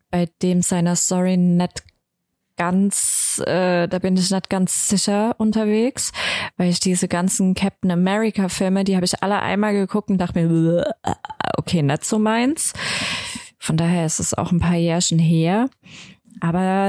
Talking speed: 155 wpm